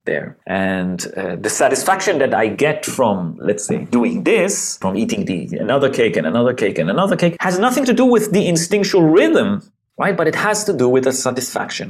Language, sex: English, male